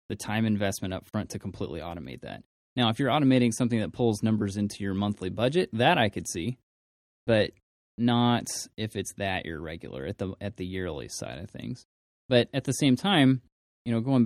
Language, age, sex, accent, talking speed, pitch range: English, 20-39, male, American, 200 wpm, 100-120 Hz